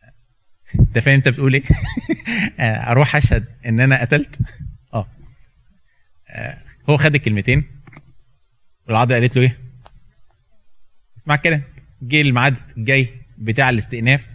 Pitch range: 115-140 Hz